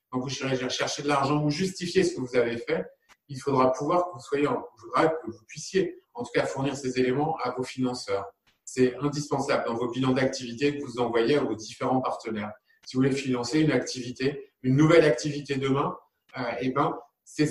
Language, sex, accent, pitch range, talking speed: French, male, French, 130-165 Hz, 190 wpm